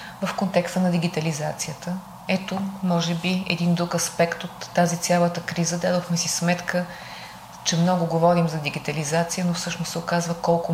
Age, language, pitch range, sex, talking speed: 30-49, Bulgarian, 170-185 Hz, female, 150 wpm